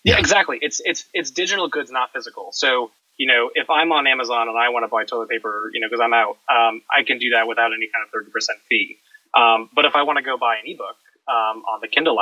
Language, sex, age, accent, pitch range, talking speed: English, male, 20-39, American, 115-155 Hz, 260 wpm